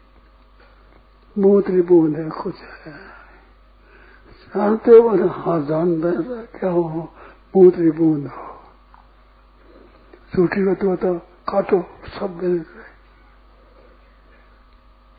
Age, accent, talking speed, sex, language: 60-79, native, 90 wpm, male, Hindi